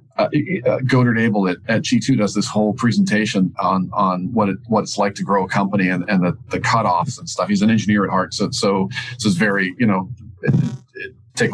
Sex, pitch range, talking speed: male, 100-125 Hz, 220 wpm